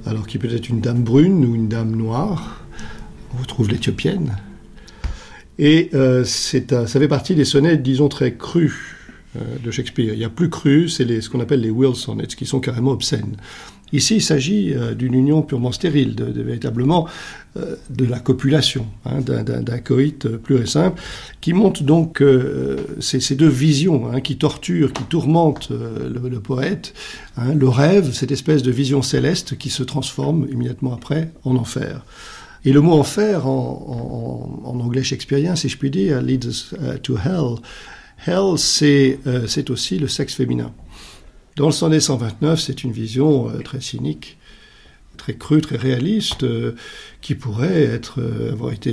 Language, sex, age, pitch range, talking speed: French, male, 50-69, 125-150 Hz, 185 wpm